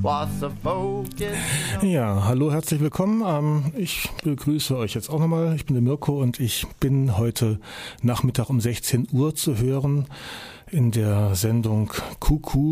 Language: German